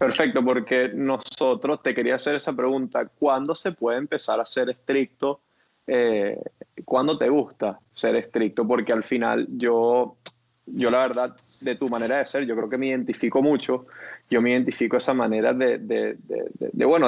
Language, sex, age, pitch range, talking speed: Spanish, male, 20-39, 125-160 Hz, 180 wpm